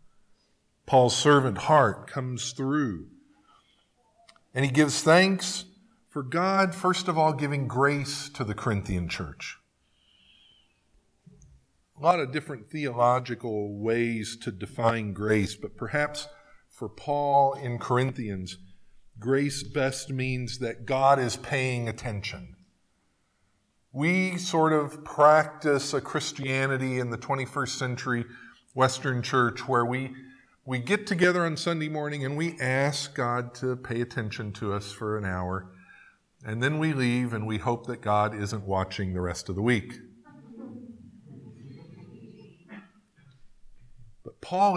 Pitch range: 115-150 Hz